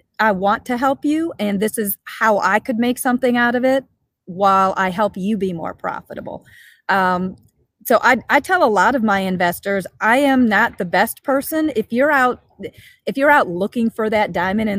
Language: English